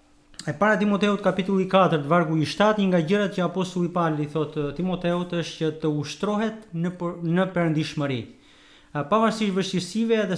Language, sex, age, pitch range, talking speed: English, male, 30-49, 155-200 Hz, 125 wpm